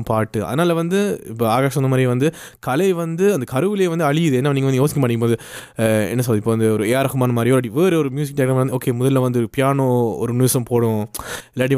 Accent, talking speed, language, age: native, 200 wpm, Tamil, 20-39